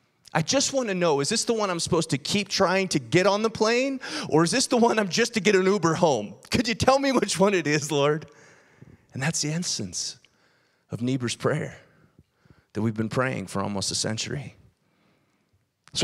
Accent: American